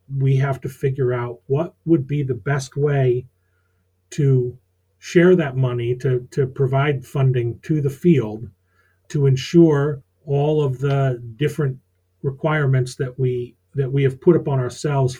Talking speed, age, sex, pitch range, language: 145 wpm, 40-59, male, 120-145 Hz, English